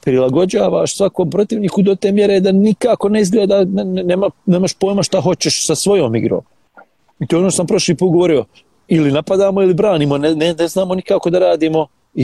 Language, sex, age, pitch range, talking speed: English, male, 40-59, 140-180 Hz, 190 wpm